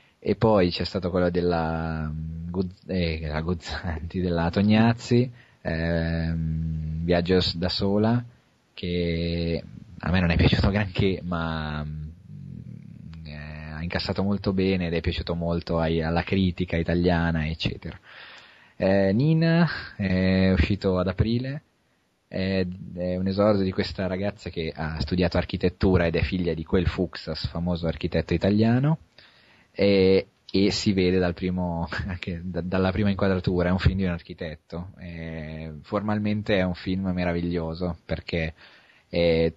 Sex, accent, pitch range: male, Italian, 85-95 Hz